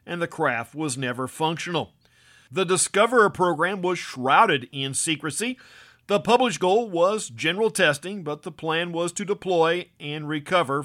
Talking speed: 150 wpm